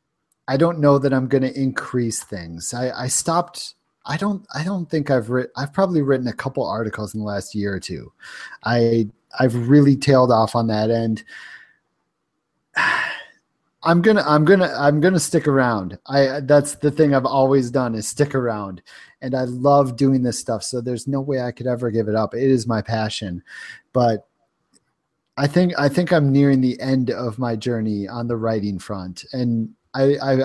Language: English